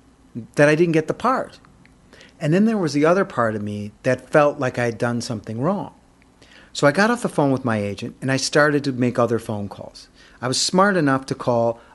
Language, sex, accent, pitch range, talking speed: English, male, American, 115-155 Hz, 230 wpm